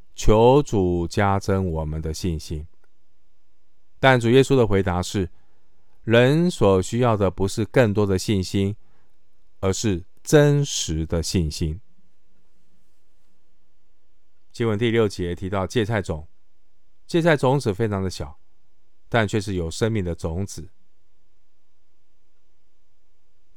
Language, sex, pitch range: Chinese, male, 85-110 Hz